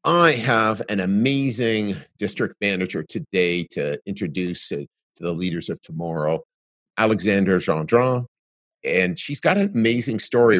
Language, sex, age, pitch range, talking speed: English, male, 50-69, 90-110 Hz, 125 wpm